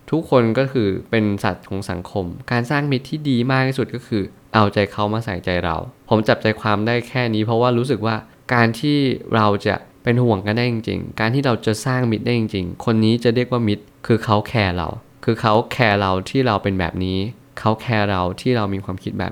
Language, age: Thai, 20-39